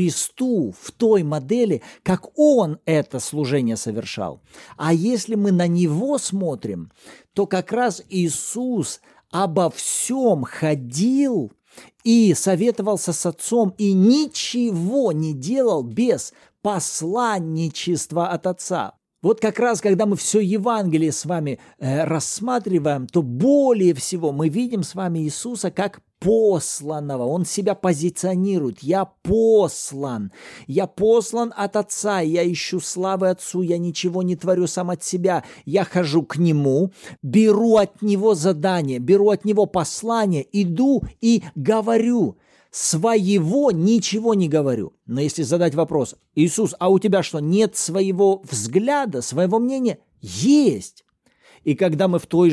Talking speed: 130 wpm